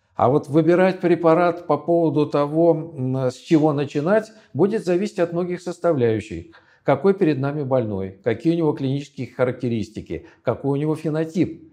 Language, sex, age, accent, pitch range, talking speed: Russian, male, 50-69, native, 120-155 Hz, 145 wpm